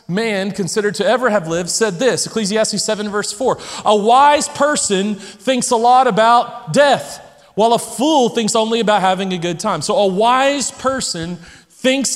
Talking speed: 175 wpm